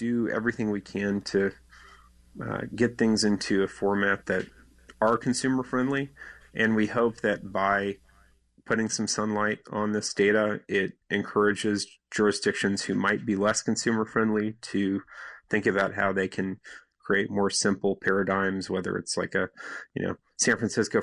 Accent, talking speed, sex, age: American, 150 wpm, male, 30-49